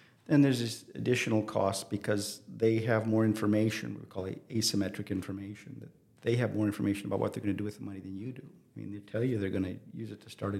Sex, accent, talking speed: male, American, 255 wpm